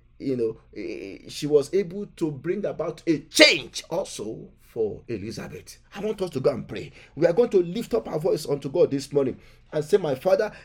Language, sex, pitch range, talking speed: English, male, 195-300 Hz, 205 wpm